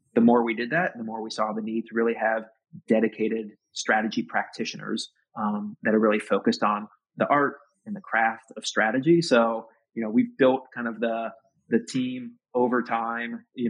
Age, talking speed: 30-49, 195 wpm